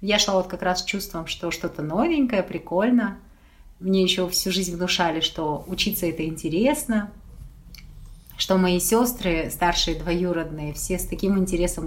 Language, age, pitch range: Russian, 30-49, 165-220 Hz